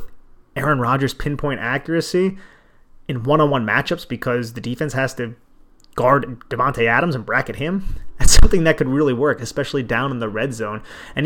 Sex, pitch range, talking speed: male, 115-140 Hz, 165 wpm